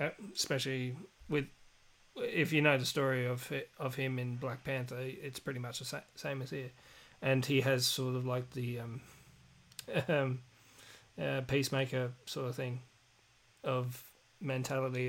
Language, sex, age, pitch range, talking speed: English, male, 30-49, 125-145 Hz, 140 wpm